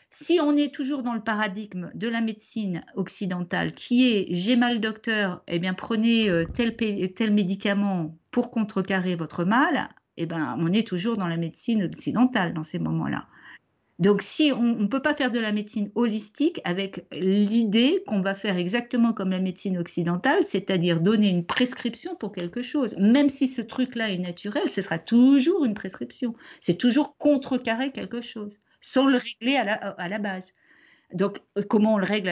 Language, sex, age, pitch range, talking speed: French, female, 50-69, 180-240 Hz, 180 wpm